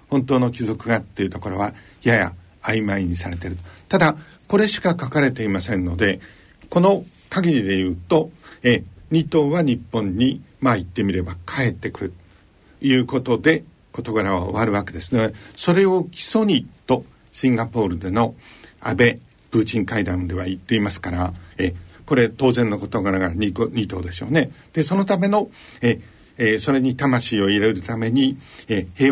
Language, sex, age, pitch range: Japanese, male, 60-79, 95-140 Hz